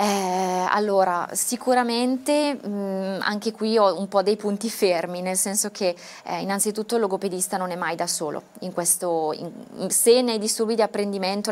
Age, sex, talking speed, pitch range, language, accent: 20-39, female, 145 wpm, 180-200 Hz, Italian, native